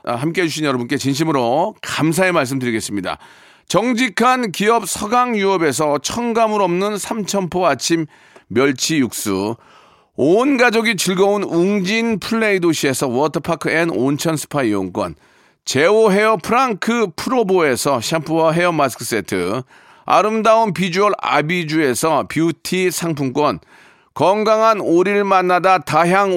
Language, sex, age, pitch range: Korean, male, 40-59, 160-215 Hz